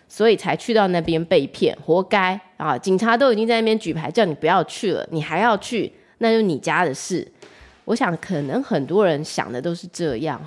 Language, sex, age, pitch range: Chinese, female, 20-39, 170-240 Hz